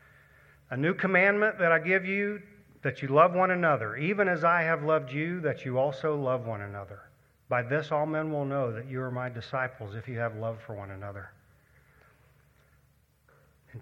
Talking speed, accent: 185 wpm, American